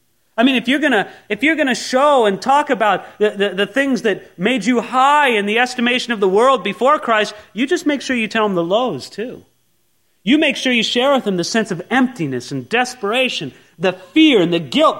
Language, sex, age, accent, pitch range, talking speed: English, male, 40-59, American, 160-255 Hz, 215 wpm